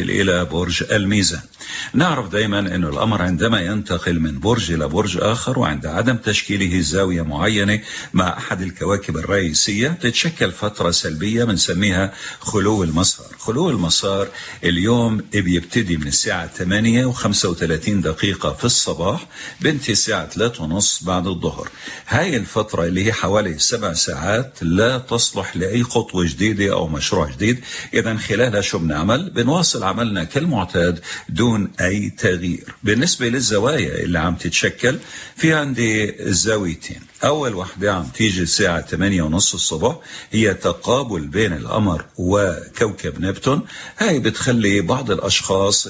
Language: Arabic